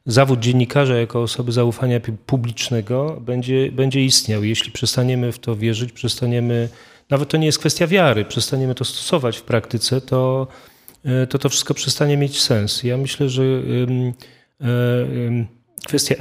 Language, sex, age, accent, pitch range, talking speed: Polish, male, 40-59, native, 115-135 Hz, 135 wpm